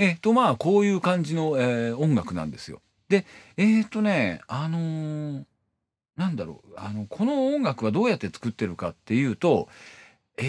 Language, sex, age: Japanese, male, 40-59